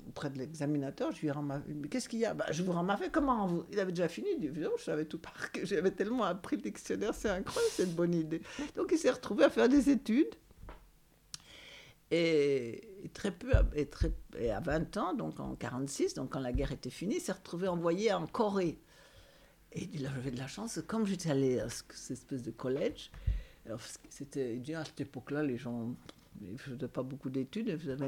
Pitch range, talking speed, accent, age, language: 140-200 Hz, 205 wpm, French, 60-79, French